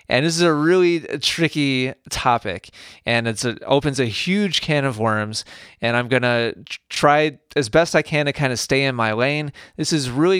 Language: English